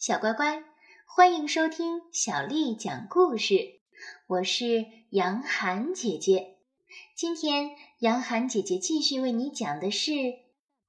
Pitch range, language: 210-315 Hz, Chinese